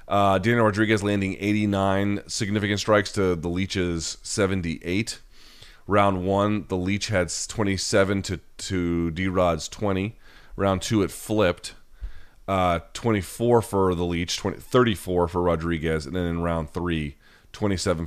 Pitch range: 85-100 Hz